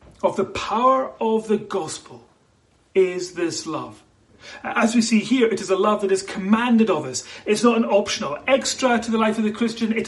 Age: 40-59